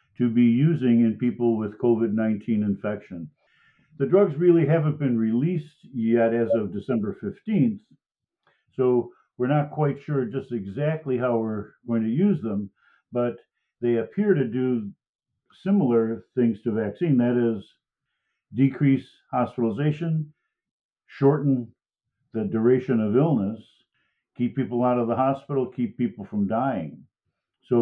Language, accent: English, American